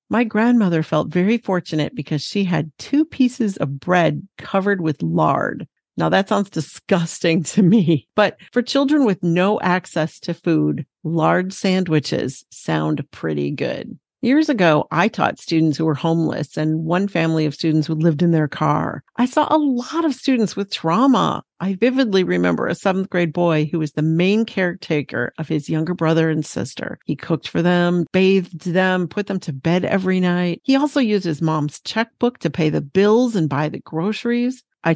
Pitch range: 155-195 Hz